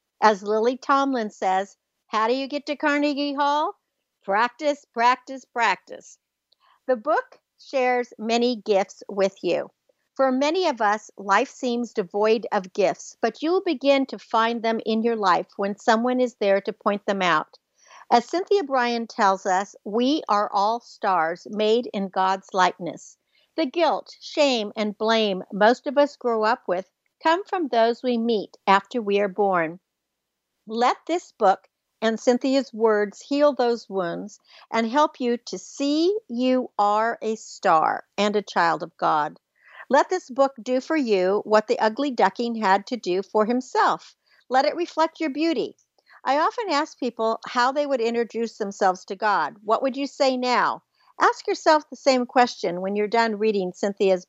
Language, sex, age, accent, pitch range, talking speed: English, female, 60-79, American, 205-275 Hz, 165 wpm